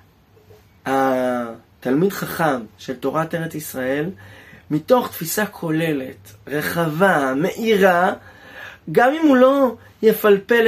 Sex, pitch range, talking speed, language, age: male, 135-205 Hz, 90 wpm, Hebrew, 30-49